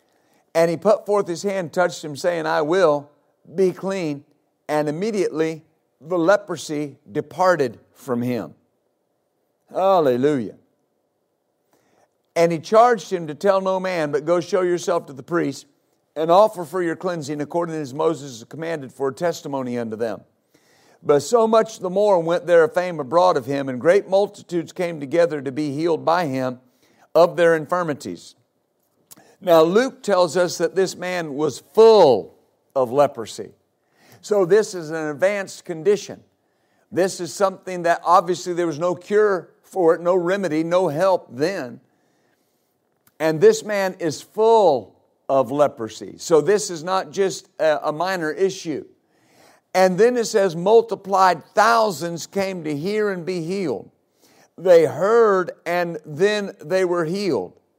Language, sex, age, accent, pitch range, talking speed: English, male, 50-69, American, 150-190 Hz, 145 wpm